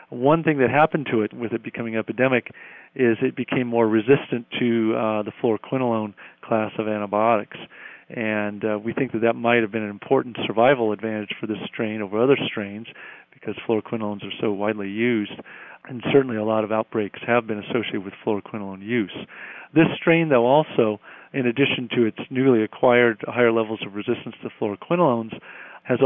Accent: American